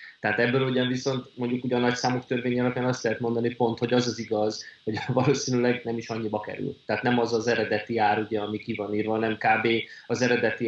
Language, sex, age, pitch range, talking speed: Hungarian, male, 30-49, 110-120 Hz, 215 wpm